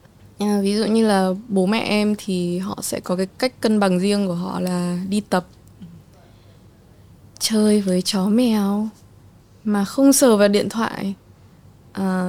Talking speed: 150 wpm